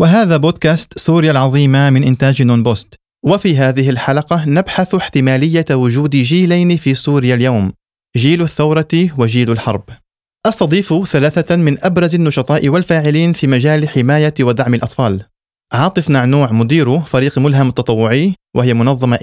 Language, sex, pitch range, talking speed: Arabic, male, 115-155 Hz, 130 wpm